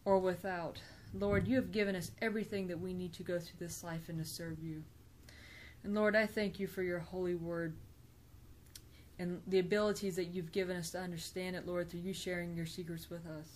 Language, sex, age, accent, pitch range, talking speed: English, female, 20-39, American, 175-205 Hz, 210 wpm